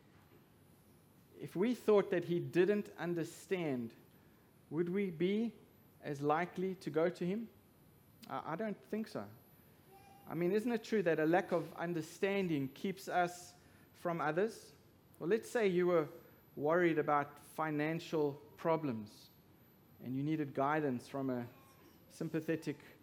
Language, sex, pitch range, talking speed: English, male, 155-190 Hz, 130 wpm